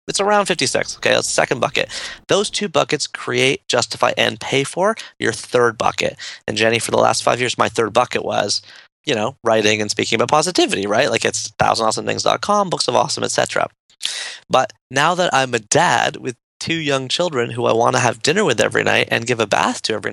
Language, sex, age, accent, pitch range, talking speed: English, male, 20-39, American, 105-135 Hz, 210 wpm